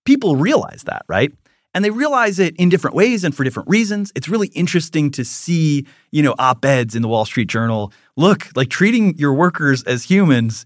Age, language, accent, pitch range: 30-49, English, American, 130-190 Hz